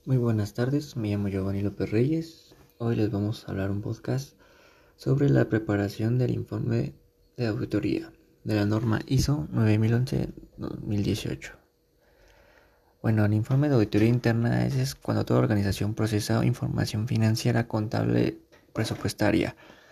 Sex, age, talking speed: male, 20-39, 130 wpm